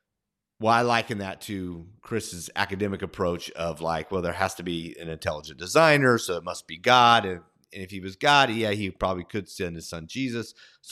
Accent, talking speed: American, 205 wpm